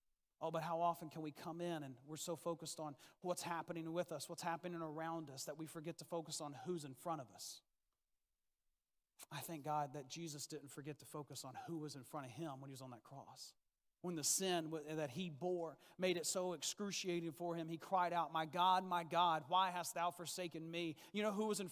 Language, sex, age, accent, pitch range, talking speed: English, male, 40-59, American, 140-170 Hz, 230 wpm